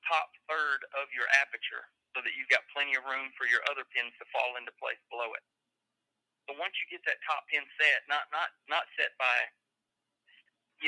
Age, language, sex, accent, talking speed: 40-59, English, male, American, 200 wpm